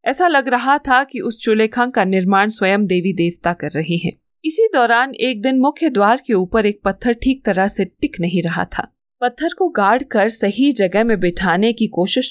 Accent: native